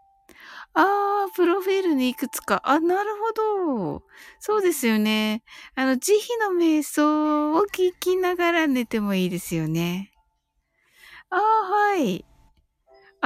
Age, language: 60-79, Japanese